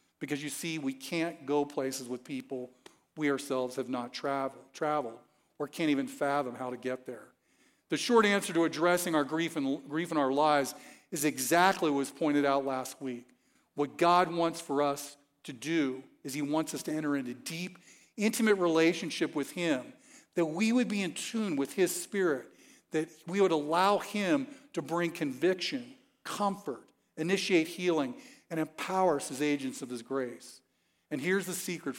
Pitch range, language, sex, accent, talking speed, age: 140-190 Hz, English, male, American, 175 wpm, 50-69